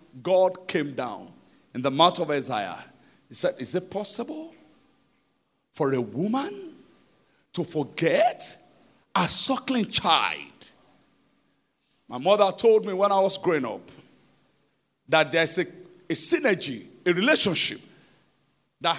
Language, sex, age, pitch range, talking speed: English, male, 50-69, 200-310 Hz, 120 wpm